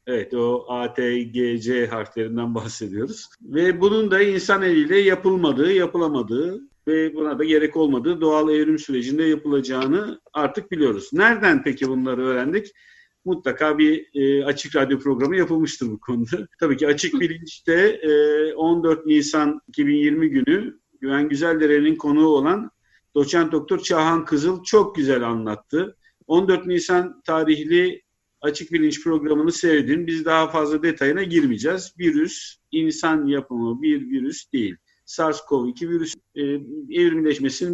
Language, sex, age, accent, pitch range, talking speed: Turkish, male, 50-69, native, 135-180 Hz, 125 wpm